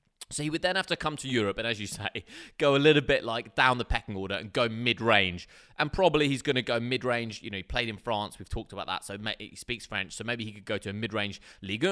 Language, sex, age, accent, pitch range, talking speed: English, male, 20-39, British, 100-140 Hz, 275 wpm